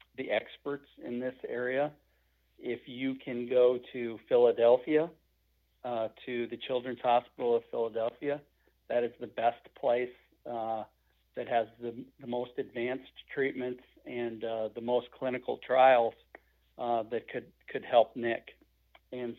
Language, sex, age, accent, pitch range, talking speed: English, male, 50-69, American, 115-135 Hz, 135 wpm